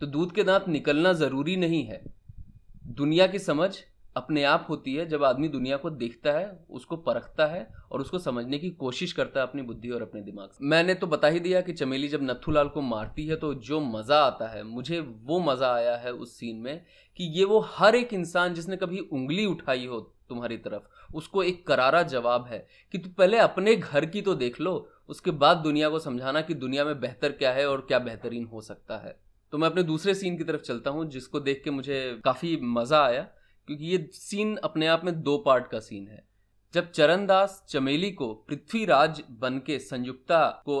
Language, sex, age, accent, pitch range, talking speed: Hindi, male, 30-49, native, 130-175 Hz, 205 wpm